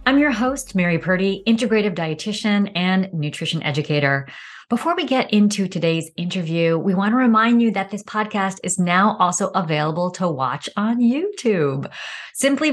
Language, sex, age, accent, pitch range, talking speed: English, female, 30-49, American, 165-230 Hz, 155 wpm